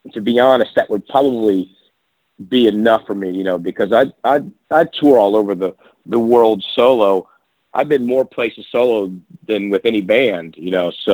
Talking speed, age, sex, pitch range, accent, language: 190 wpm, 50-69, male, 100-115 Hz, American, English